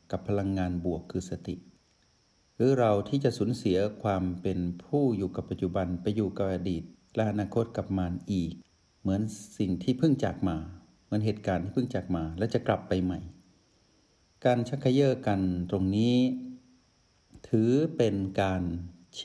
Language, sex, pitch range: Thai, male, 90-120 Hz